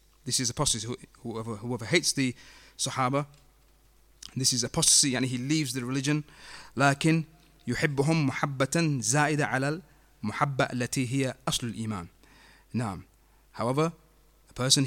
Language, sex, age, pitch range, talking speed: English, male, 30-49, 120-155 Hz, 130 wpm